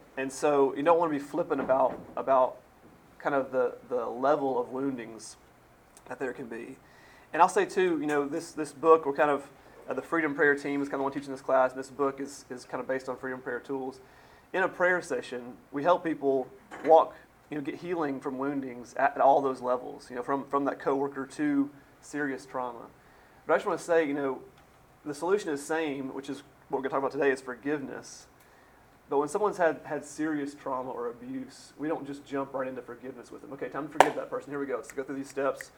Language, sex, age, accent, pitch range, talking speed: English, male, 30-49, American, 130-150 Hz, 235 wpm